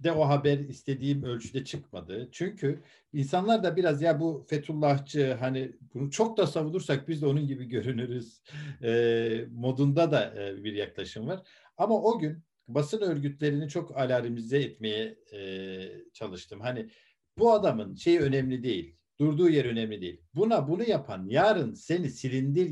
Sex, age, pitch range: male, 50-69, 115-160 Hz